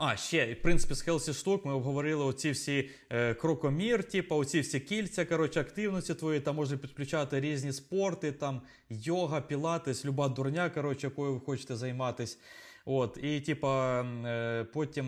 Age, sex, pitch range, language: 20-39, male, 120-150 Hz, Ukrainian